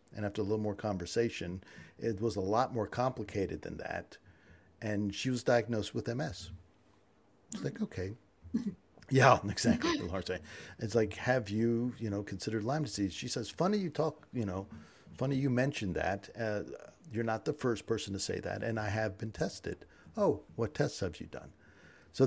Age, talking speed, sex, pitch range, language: 50-69, 180 wpm, male, 100-120 Hz, English